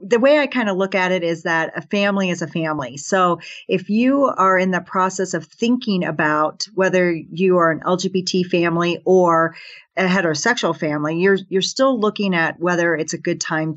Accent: American